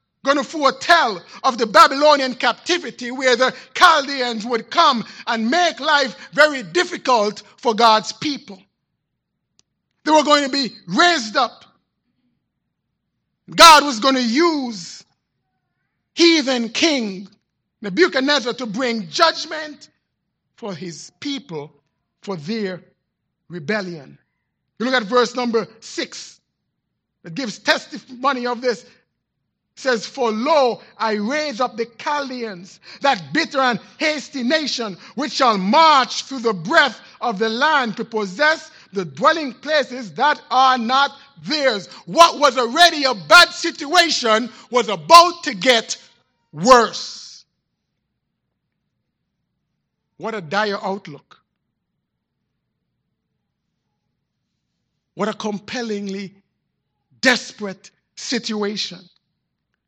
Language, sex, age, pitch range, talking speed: English, male, 50-69, 215-290 Hz, 105 wpm